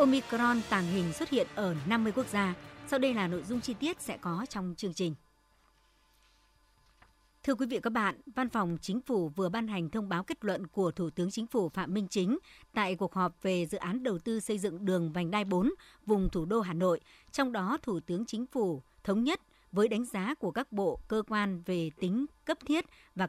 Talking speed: 220 wpm